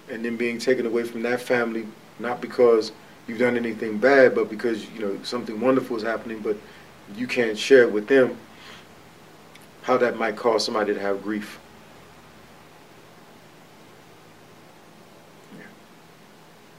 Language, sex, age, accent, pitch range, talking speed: English, male, 40-59, American, 105-125 Hz, 130 wpm